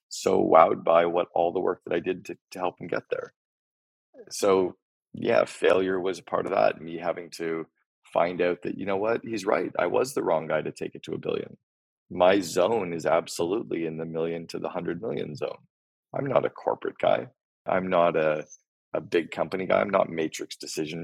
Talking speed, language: 210 wpm, English